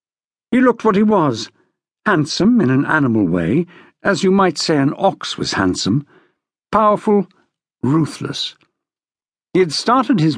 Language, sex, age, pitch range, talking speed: English, male, 60-79, 150-215 Hz, 135 wpm